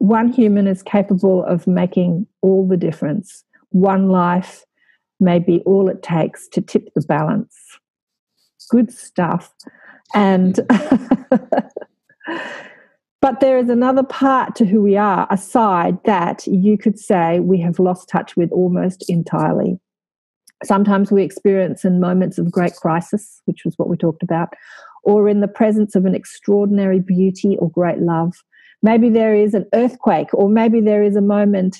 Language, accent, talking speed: English, Australian, 150 wpm